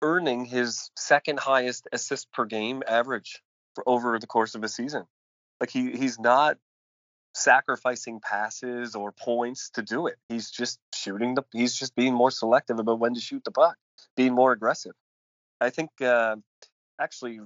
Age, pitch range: 30-49, 110-125 Hz